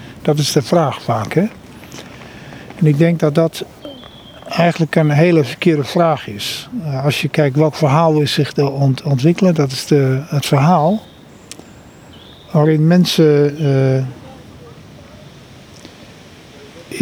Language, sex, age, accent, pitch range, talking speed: Dutch, male, 50-69, Dutch, 140-165 Hz, 125 wpm